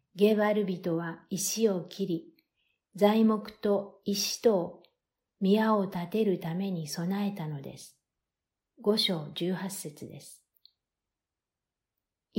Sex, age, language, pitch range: female, 50-69, Japanese, 170-210 Hz